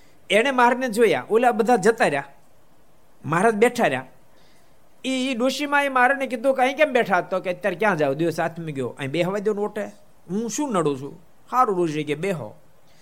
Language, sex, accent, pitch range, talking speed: Gujarati, male, native, 120-180 Hz, 200 wpm